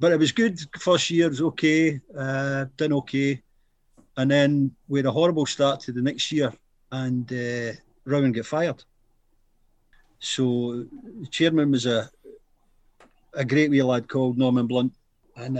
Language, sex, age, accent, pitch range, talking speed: English, male, 50-69, British, 125-150 Hz, 155 wpm